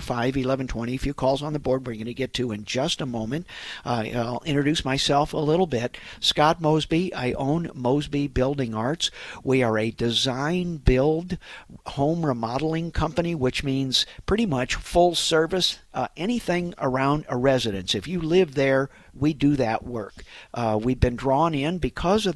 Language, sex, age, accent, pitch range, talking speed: English, male, 50-69, American, 120-150 Hz, 175 wpm